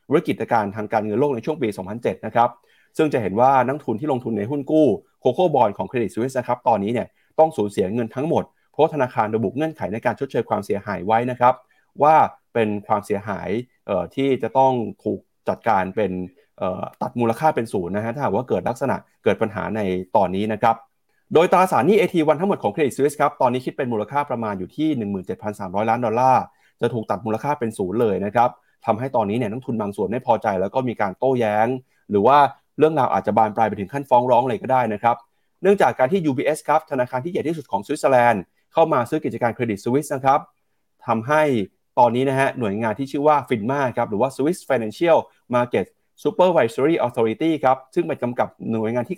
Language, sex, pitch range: Thai, male, 110-145 Hz